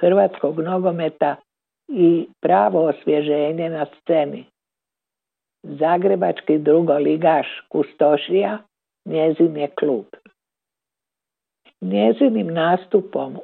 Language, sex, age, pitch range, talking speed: Croatian, female, 60-79, 150-195 Hz, 70 wpm